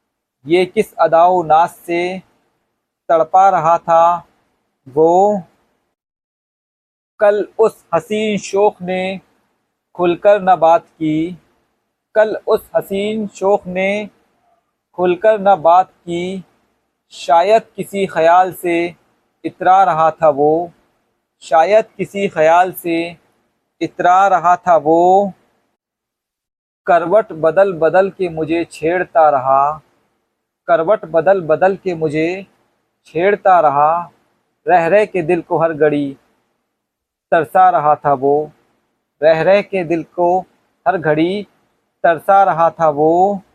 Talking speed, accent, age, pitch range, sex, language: 105 wpm, native, 50-69, 160-195 Hz, male, Hindi